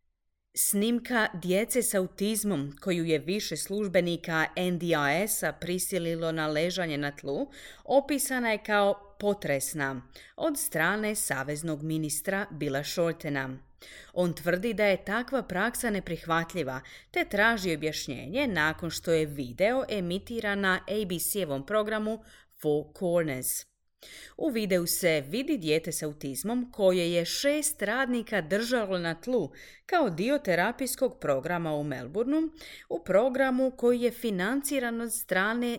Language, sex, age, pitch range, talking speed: Croatian, female, 30-49, 160-225 Hz, 115 wpm